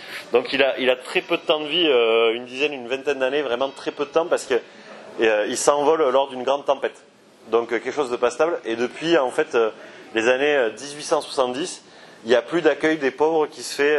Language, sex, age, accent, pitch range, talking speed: French, male, 30-49, French, 120-150 Hz, 235 wpm